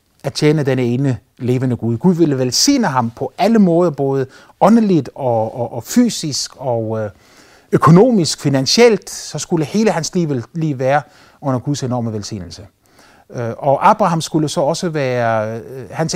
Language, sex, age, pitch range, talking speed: Danish, male, 30-49, 130-190 Hz, 150 wpm